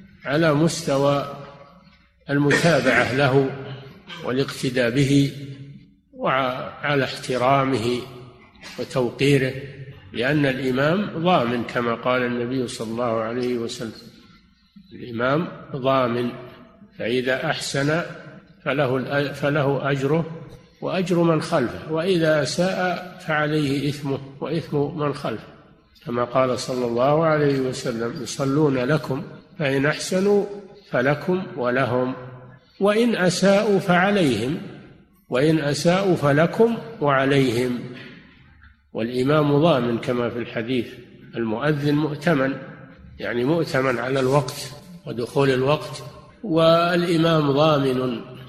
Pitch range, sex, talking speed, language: 130-160 Hz, male, 85 wpm, Arabic